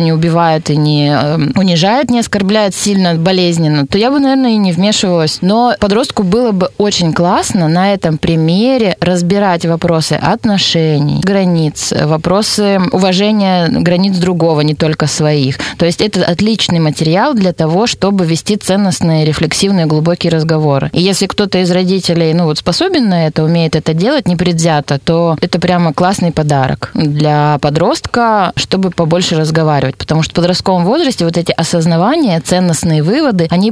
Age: 20-39